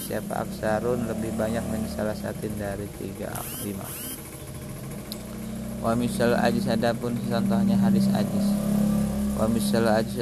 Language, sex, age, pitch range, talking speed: Indonesian, male, 20-39, 105-115 Hz, 125 wpm